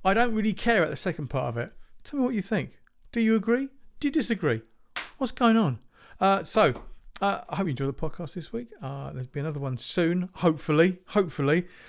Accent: British